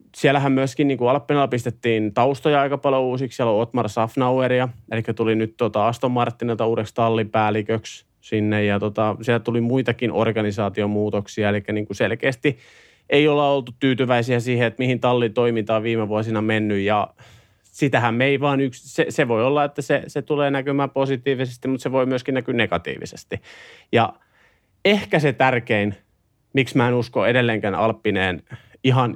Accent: native